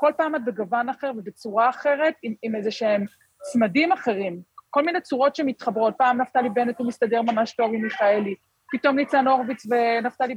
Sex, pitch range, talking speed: female, 220-275 Hz, 175 wpm